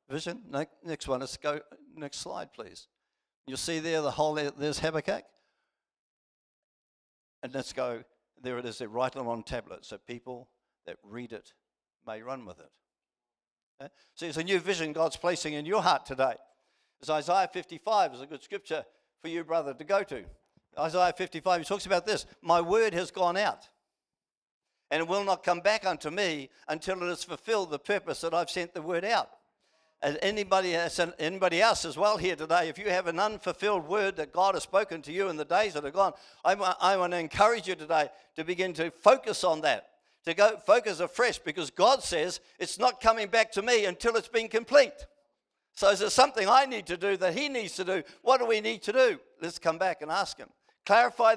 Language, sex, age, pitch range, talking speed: English, male, 60-79, 155-210 Hz, 200 wpm